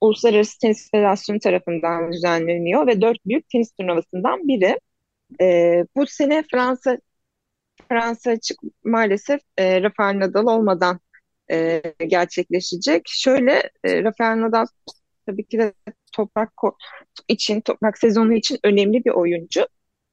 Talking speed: 120 wpm